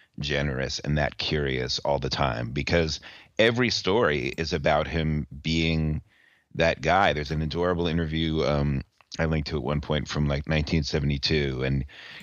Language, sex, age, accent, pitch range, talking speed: English, male, 30-49, American, 70-80 Hz, 145 wpm